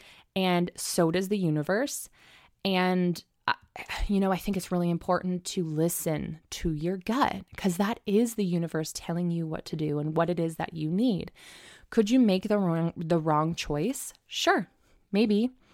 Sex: female